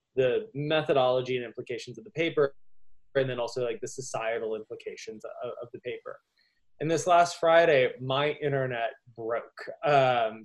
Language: English